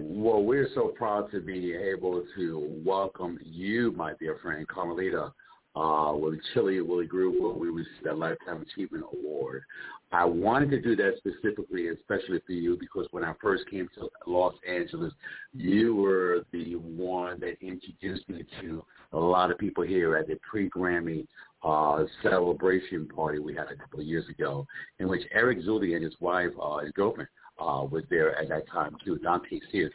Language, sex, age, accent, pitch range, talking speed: English, male, 50-69, American, 85-140 Hz, 175 wpm